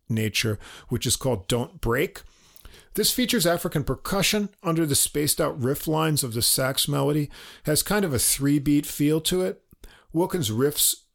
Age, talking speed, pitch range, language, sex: 50-69, 160 wpm, 115-150 Hz, English, male